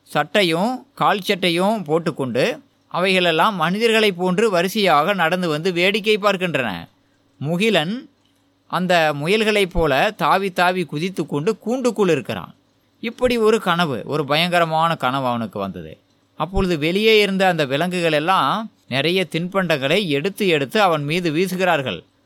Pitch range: 135-190 Hz